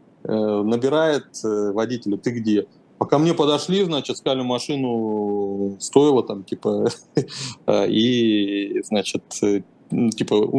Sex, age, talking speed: male, 30-49, 100 wpm